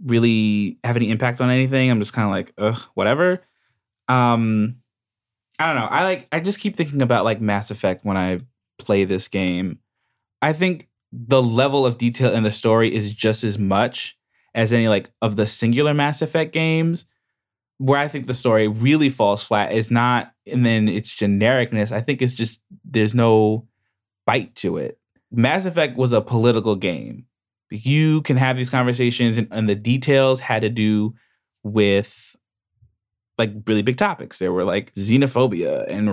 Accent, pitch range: American, 105-130 Hz